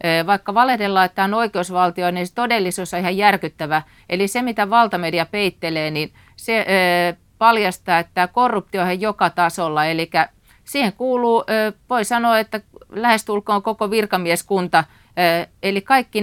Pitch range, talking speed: 170-215 Hz, 135 wpm